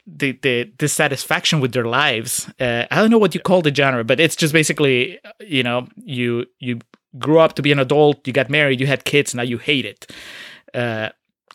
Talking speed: 215 wpm